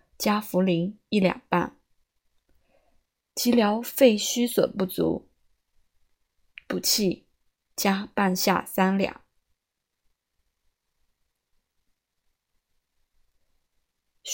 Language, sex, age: Chinese, female, 20-39